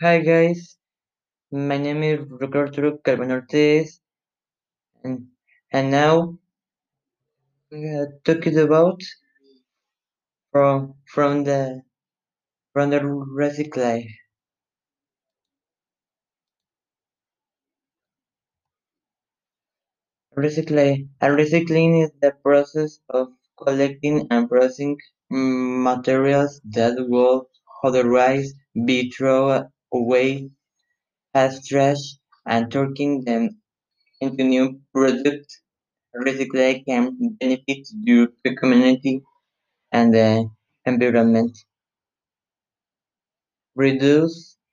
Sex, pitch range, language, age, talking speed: male, 130-150 Hz, English, 20-39, 70 wpm